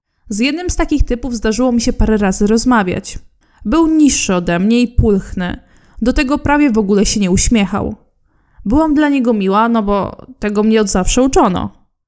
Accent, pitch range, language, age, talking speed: native, 210-270 Hz, Polish, 20-39, 180 wpm